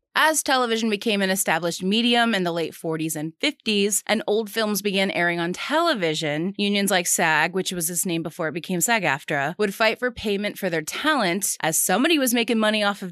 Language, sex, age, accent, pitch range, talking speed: English, female, 30-49, American, 180-230 Hz, 200 wpm